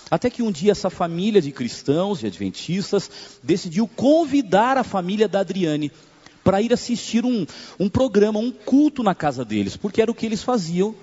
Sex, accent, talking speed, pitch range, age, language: male, Brazilian, 180 wpm, 140-210 Hz, 40-59, Portuguese